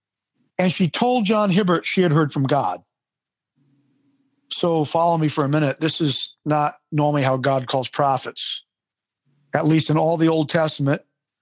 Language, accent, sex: English, American, male